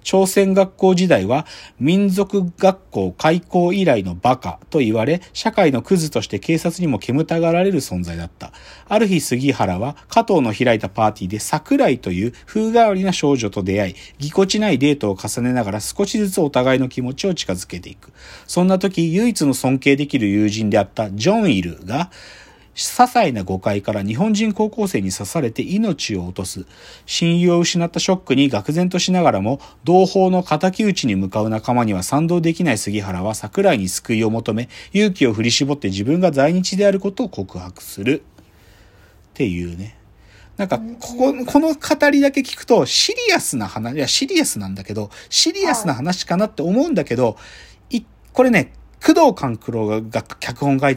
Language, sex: Japanese, male